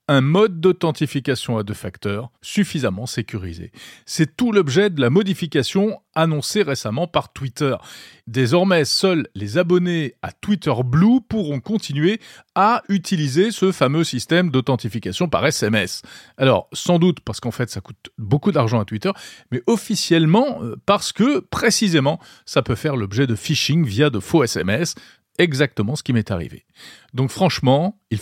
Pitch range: 120-180 Hz